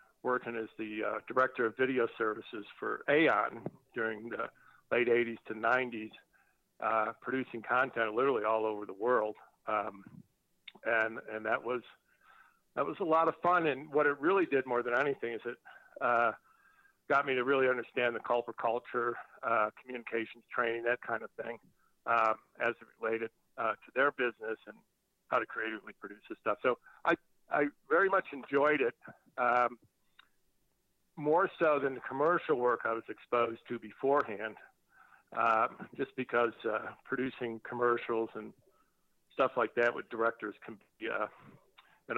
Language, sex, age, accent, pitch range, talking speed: English, male, 50-69, American, 115-130 Hz, 160 wpm